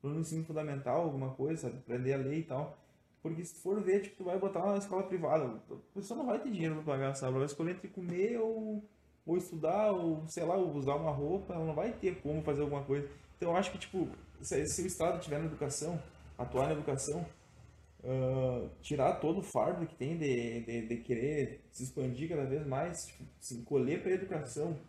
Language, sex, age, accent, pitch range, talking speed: Portuguese, male, 20-39, Brazilian, 140-185 Hz, 220 wpm